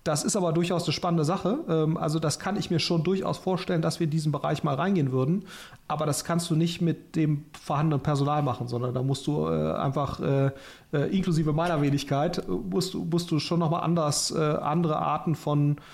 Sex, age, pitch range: male, 40-59, 150-175 Hz